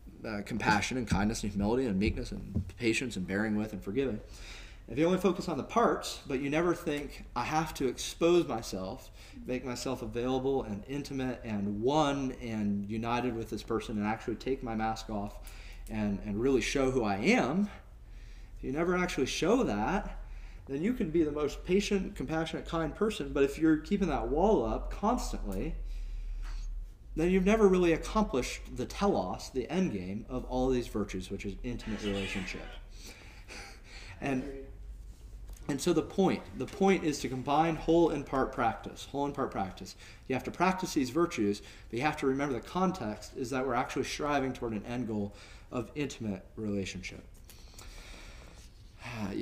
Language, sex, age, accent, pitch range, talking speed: English, male, 30-49, American, 105-150 Hz, 175 wpm